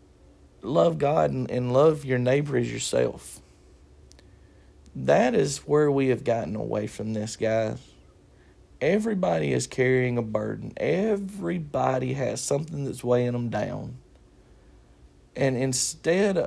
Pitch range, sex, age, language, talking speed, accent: 95-145 Hz, male, 40-59, English, 115 wpm, American